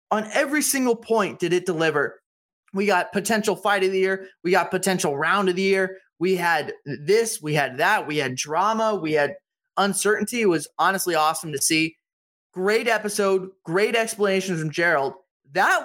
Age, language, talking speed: 20-39, English, 175 wpm